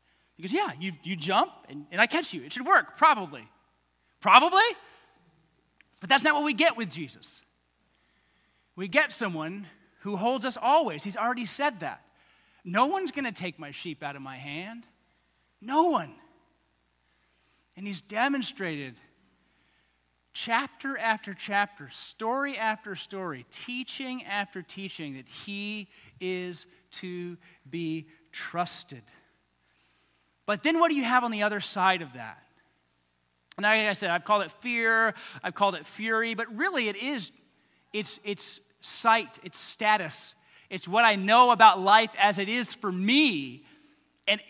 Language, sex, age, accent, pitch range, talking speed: English, male, 30-49, American, 145-230 Hz, 150 wpm